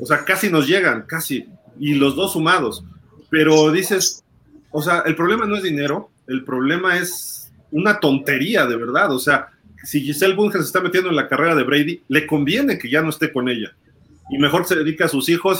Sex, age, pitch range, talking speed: male, 30-49, 130-160 Hz, 210 wpm